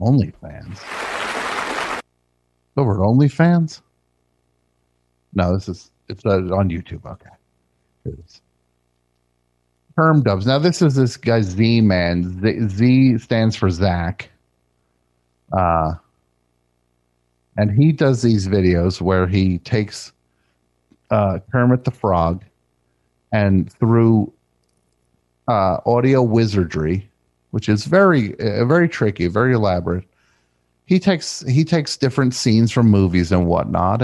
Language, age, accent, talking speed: English, 50-69, American, 110 wpm